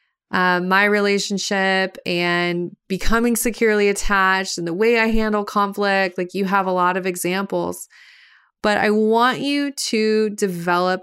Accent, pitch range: American, 175-210 Hz